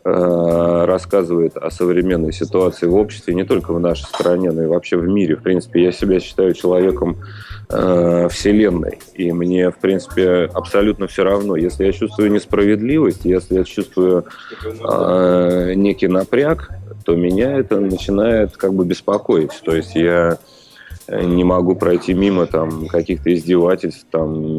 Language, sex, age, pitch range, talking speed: Russian, male, 20-39, 85-95 Hz, 140 wpm